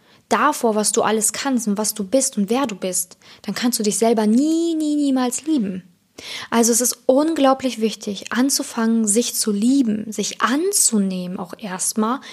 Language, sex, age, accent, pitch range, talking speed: German, female, 20-39, German, 210-280 Hz, 170 wpm